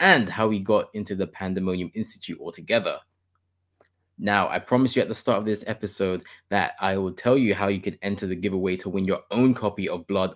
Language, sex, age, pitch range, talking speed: English, male, 20-39, 95-120 Hz, 215 wpm